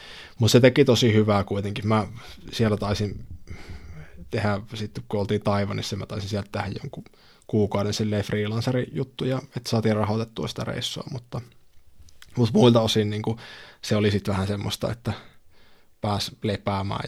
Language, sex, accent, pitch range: Finnish, male, native, 100-115 Hz